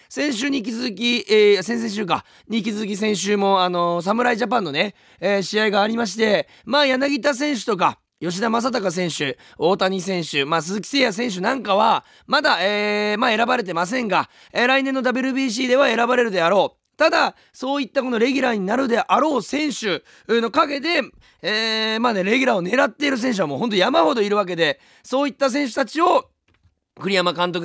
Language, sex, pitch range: Japanese, male, 185-260 Hz